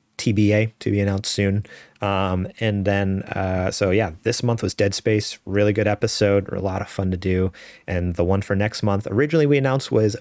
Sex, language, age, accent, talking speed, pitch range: male, English, 30-49, American, 205 wpm, 95-120 Hz